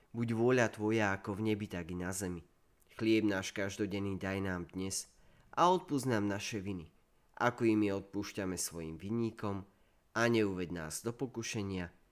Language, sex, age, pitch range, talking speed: Slovak, male, 30-49, 90-120 Hz, 160 wpm